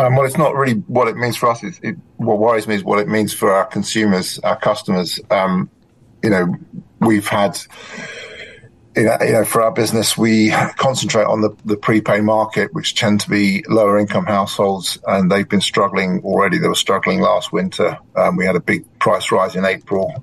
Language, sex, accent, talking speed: English, male, British, 205 wpm